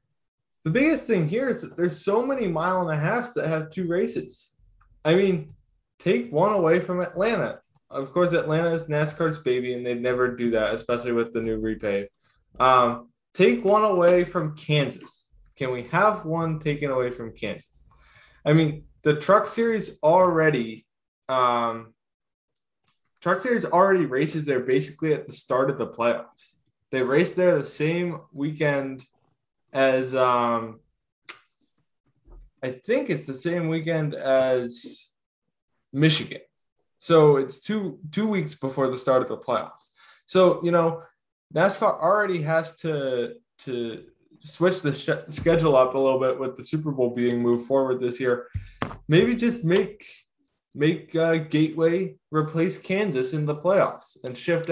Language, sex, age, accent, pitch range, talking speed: English, male, 20-39, American, 130-175 Hz, 150 wpm